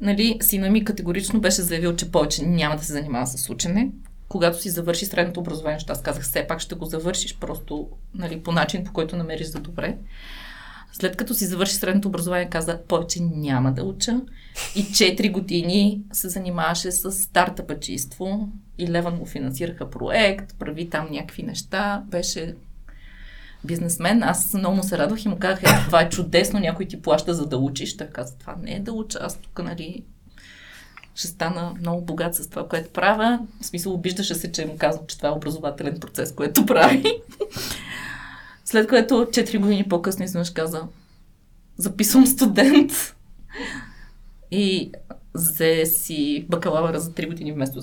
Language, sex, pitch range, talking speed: Bulgarian, female, 160-200 Hz, 165 wpm